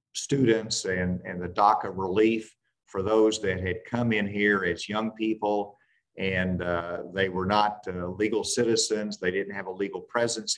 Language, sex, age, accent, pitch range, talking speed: English, male, 50-69, American, 95-110 Hz, 170 wpm